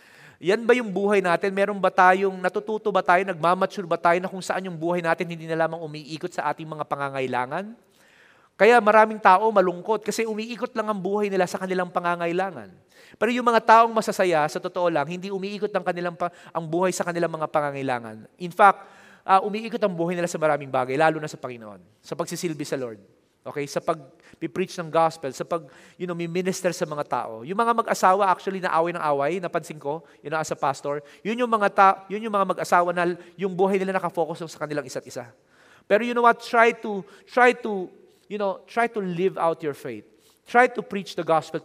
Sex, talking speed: male, 205 wpm